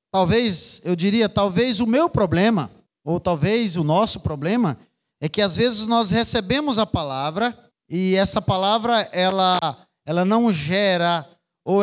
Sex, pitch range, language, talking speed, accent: male, 180-230 Hz, Portuguese, 140 wpm, Brazilian